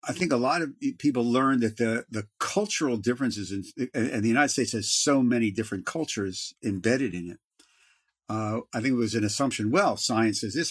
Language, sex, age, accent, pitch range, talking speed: English, male, 50-69, American, 105-130 Hz, 200 wpm